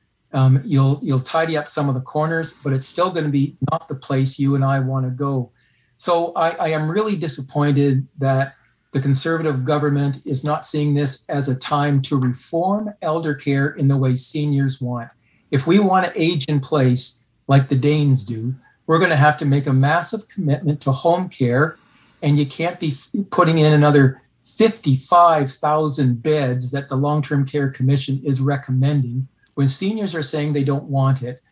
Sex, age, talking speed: male, 50-69, 175 wpm